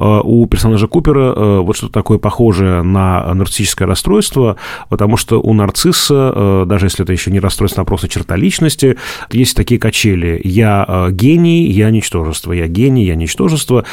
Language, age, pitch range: Russian, 30-49, 95-120 Hz